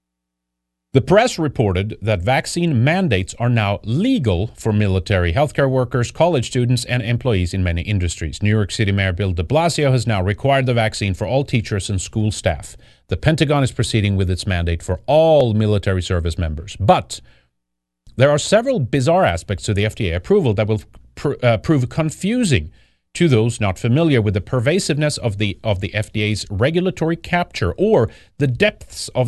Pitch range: 95-140 Hz